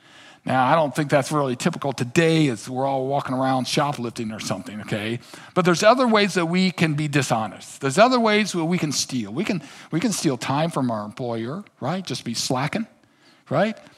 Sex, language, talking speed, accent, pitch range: male, English, 200 wpm, American, 140-185 Hz